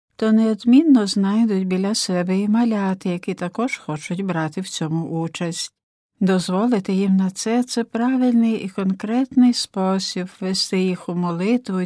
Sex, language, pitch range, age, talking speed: female, Ukrainian, 180-215 Hz, 60-79, 140 wpm